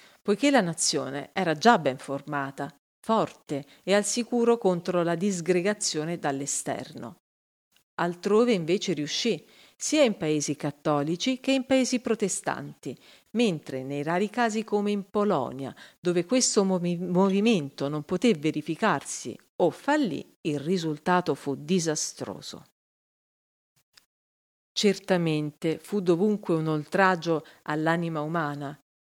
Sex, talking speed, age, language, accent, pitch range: female, 105 wpm, 40-59, Italian, native, 155-205 Hz